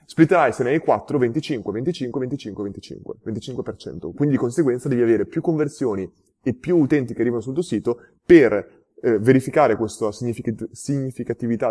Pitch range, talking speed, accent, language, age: 120-175 Hz, 150 wpm, native, Italian, 20-39